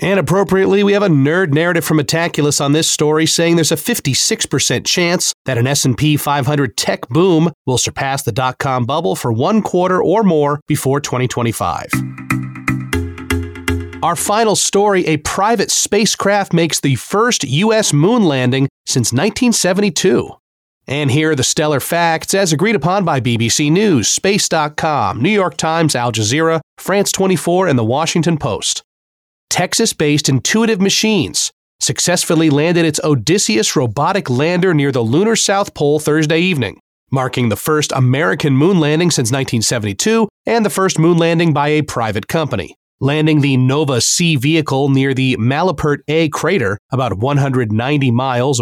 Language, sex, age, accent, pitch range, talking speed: English, male, 30-49, American, 130-175 Hz, 145 wpm